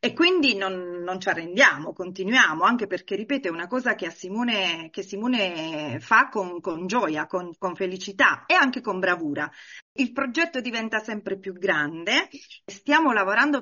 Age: 30-49